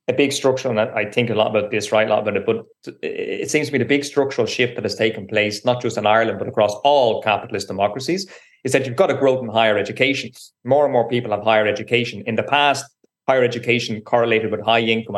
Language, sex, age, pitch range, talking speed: English, male, 20-39, 110-130 Hz, 245 wpm